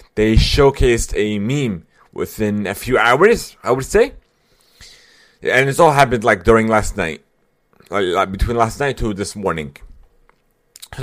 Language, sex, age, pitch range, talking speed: English, male, 30-49, 100-125 Hz, 145 wpm